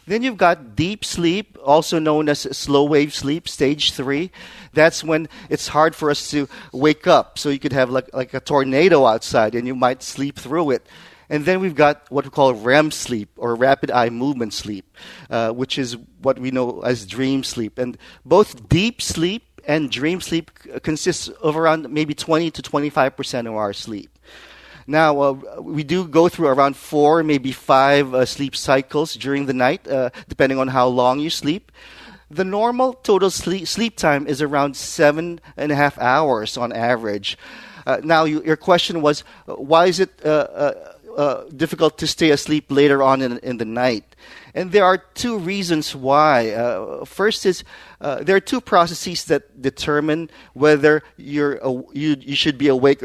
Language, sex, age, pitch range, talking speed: English, male, 40-59, 130-160 Hz, 180 wpm